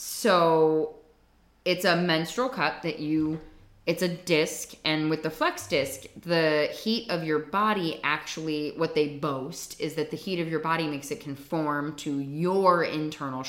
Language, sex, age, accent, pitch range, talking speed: English, female, 20-39, American, 145-175 Hz, 165 wpm